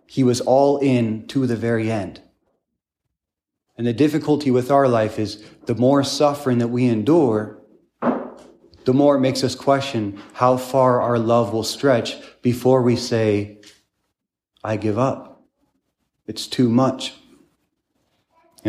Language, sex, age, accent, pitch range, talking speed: English, male, 30-49, American, 105-125 Hz, 140 wpm